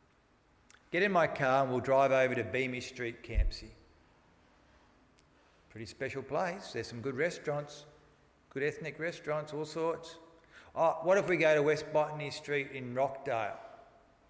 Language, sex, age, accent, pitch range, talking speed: English, male, 40-59, Australian, 110-150 Hz, 145 wpm